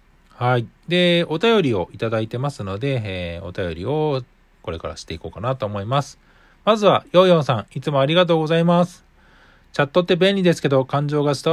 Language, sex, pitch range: Japanese, male, 115-165 Hz